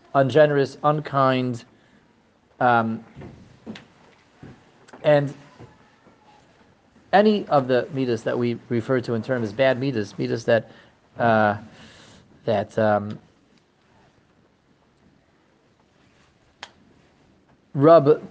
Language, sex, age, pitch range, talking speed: English, male, 40-59, 120-150 Hz, 75 wpm